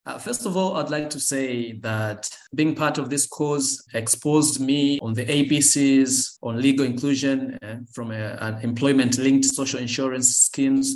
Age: 20-39